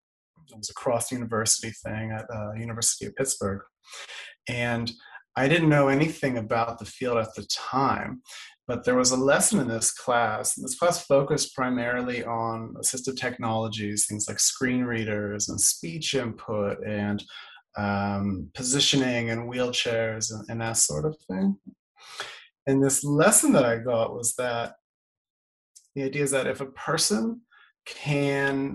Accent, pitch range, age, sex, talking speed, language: American, 110-135 Hz, 30-49, male, 150 wpm, English